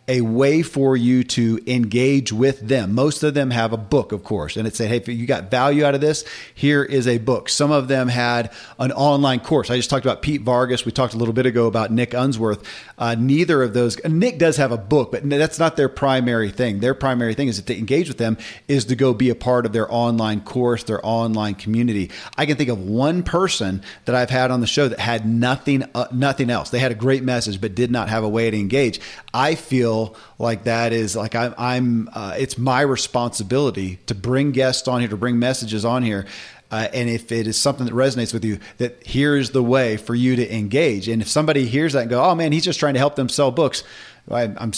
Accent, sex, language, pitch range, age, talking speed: American, male, English, 115-135 Hz, 40-59, 240 wpm